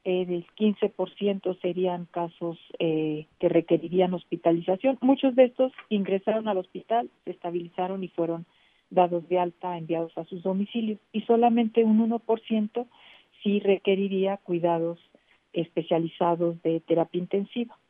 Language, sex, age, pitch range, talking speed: Spanish, female, 50-69, 170-205 Hz, 125 wpm